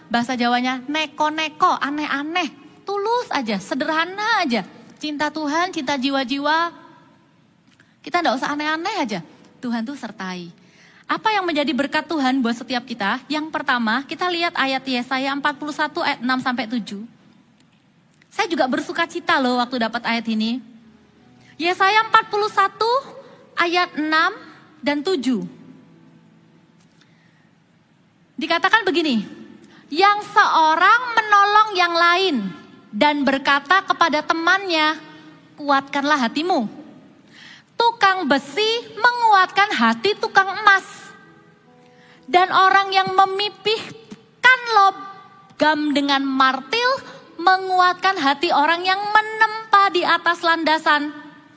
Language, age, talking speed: Indonesian, 30-49, 100 wpm